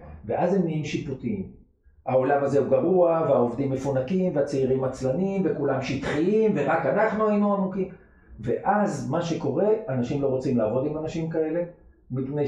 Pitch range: 130-195 Hz